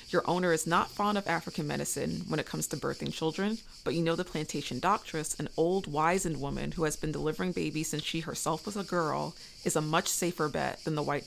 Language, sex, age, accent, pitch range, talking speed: English, female, 30-49, American, 150-180 Hz, 230 wpm